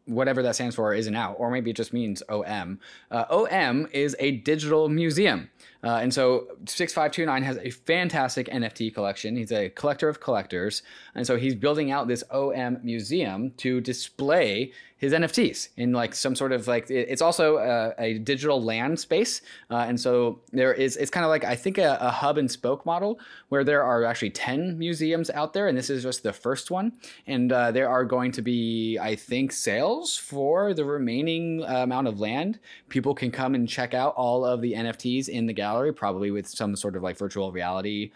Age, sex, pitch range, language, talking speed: 20-39, male, 110-140 Hz, English, 200 wpm